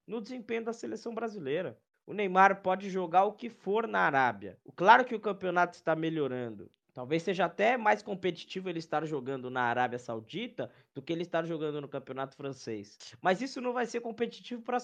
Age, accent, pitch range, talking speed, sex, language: 20-39, Brazilian, 140-215 Hz, 190 wpm, male, Portuguese